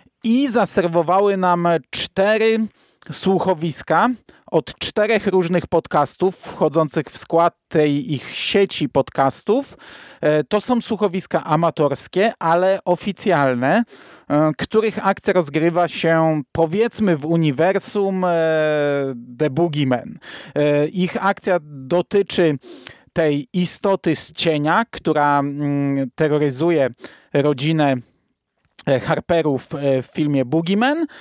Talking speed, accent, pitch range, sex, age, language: 85 wpm, native, 150-195 Hz, male, 40-59, Polish